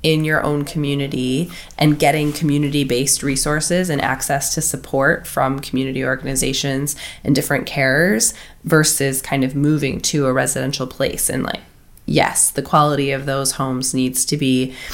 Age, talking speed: 20-39, 150 wpm